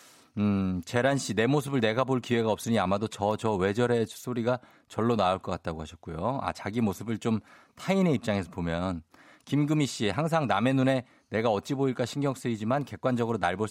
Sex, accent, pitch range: male, native, 95-135 Hz